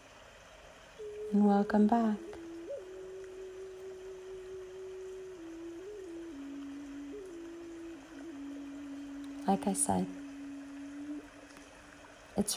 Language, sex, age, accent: English, female, 40-59, American